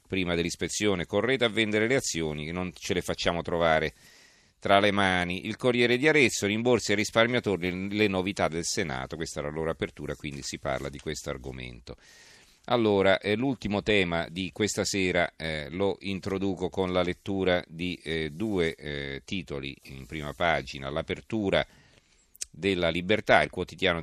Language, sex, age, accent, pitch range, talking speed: Italian, male, 40-59, native, 80-105 Hz, 155 wpm